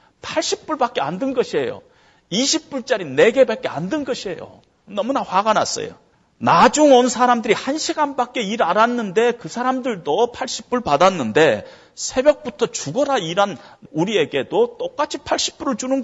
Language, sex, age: Korean, male, 40-59